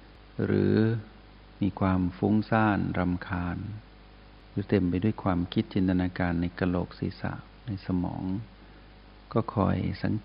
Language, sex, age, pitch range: Thai, male, 60-79, 95-105 Hz